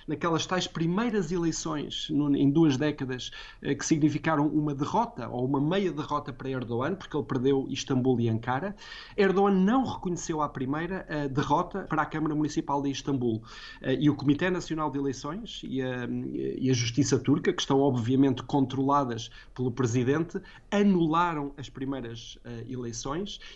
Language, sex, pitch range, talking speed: Portuguese, male, 135-165 Hz, 150 wpm